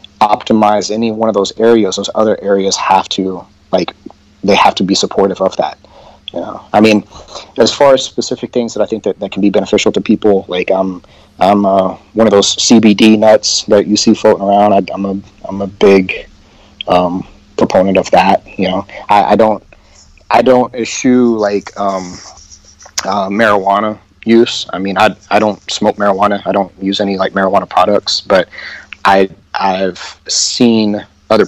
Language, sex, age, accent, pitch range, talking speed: English, male, 30-49, American, 95-110 Hz, 180 wpm